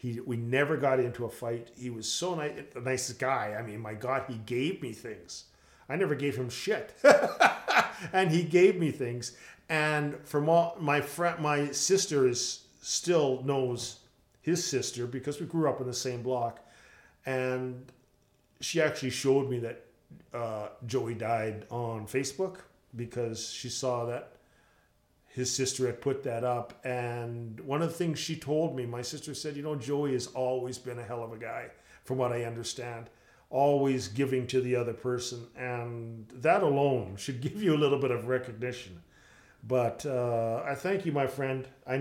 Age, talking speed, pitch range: 40-59, 175 wpm, 120-150 Hz